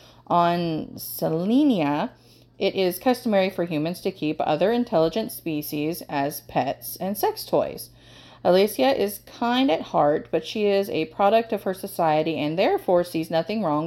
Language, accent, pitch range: English, American, 155-215 Hz